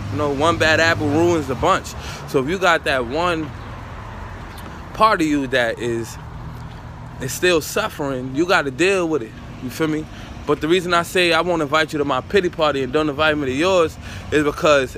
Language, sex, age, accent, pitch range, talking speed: English, male, 20-39, American, 115-165 Hz, 210 wpm